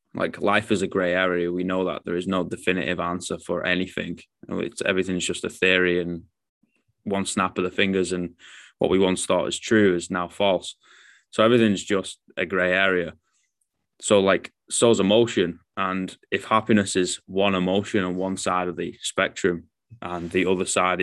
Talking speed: 185 wpm